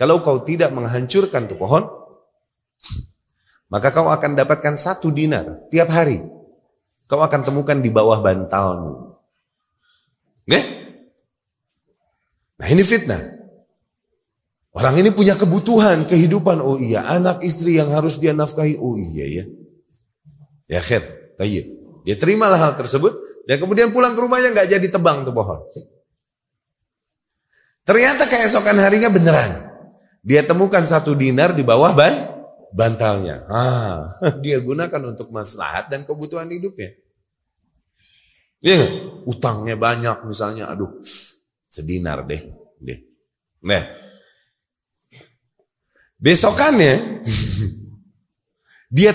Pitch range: 115-175 Hz